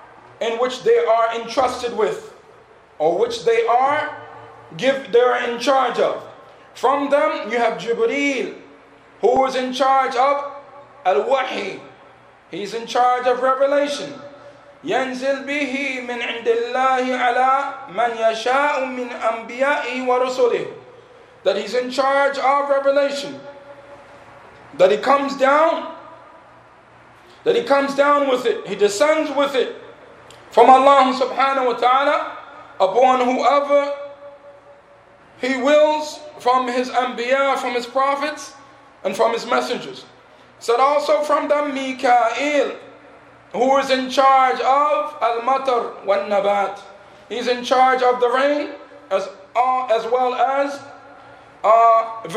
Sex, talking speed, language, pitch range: male, 110 wpm, English, 240-285 Hz